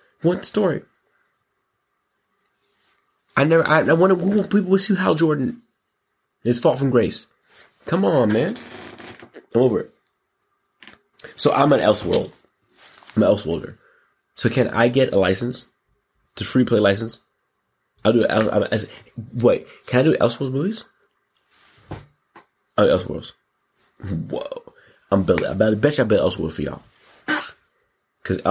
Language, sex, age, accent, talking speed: English, male, 30-49, American, 135 wpm